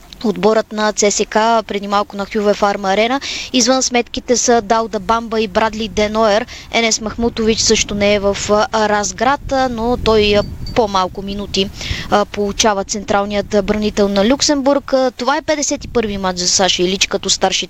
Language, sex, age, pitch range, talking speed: Bulgarian, female, 20-39, 205-240 Hz, 145 wpm